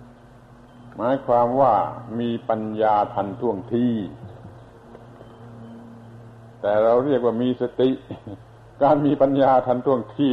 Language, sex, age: Thai, male, 60-79